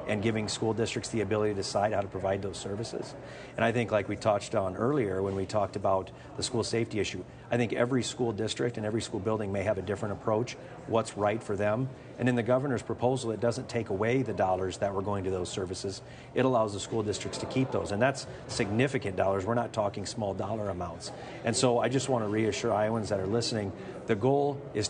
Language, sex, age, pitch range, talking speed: English, male, 40-59, 105-120 Hz, 230 wpm